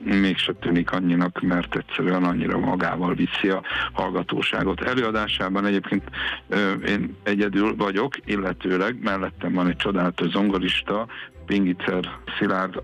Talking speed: 105 wpm